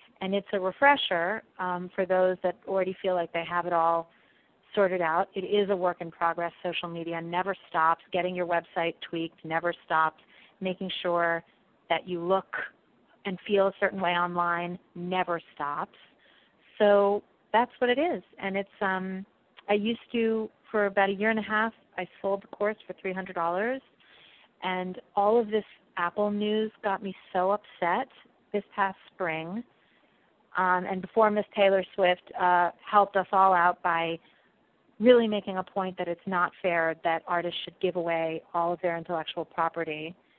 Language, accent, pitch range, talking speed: English, American, 175-200 Hz, 170 wpm